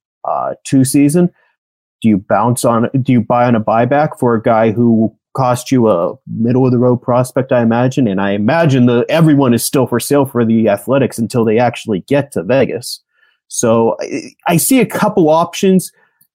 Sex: male